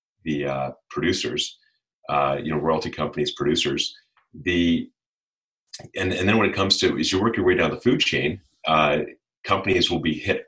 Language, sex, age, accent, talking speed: English, male, 40-59, American, 180 wpm